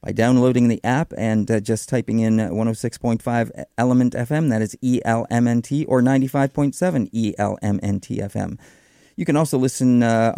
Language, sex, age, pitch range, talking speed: English, male, 40-59, 110-140 Hz, 160 wpm